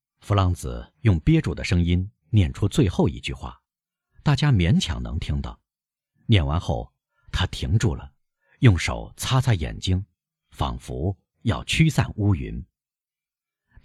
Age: 50-69